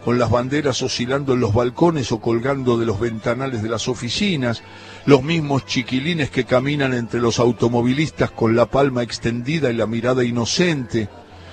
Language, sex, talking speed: Spanish, male, 160 wpm